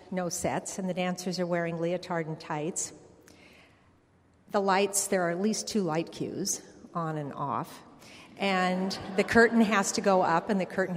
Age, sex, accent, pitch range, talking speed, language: 50-69, female, American, 170-210 Hz, 175 wpm, English